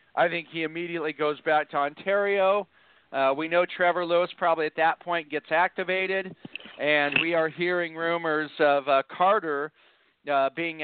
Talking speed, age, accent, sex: 160 wpm, 40-59, American, male